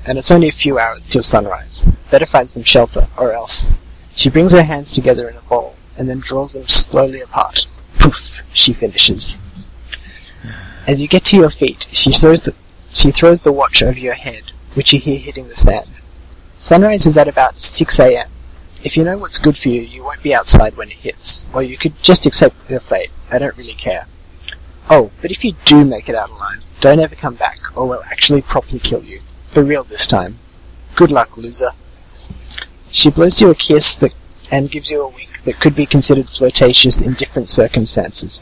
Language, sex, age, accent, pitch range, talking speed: English, male, 30-49, Australian, 95-150 Hz, 200 wpm